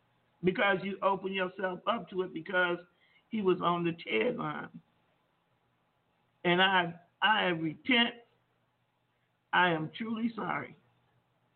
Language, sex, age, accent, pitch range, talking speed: English, male, 50-69, American, 185-245 Hz, 110 wpm